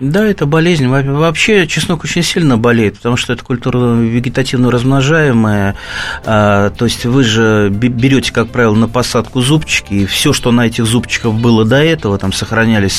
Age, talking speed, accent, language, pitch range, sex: 30-49, 160 wpm, native, Russian, 100-125 Hz, male